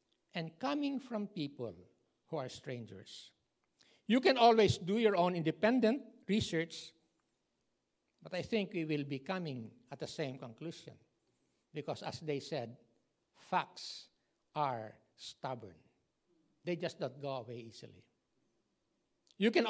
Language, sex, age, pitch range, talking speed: English, male, 60-79, 140-215 Hz, 125 wpm